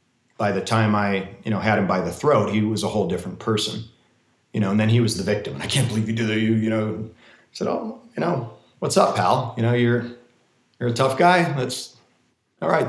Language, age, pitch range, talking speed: English, 30-49, 105-125 Hz, 240 wpm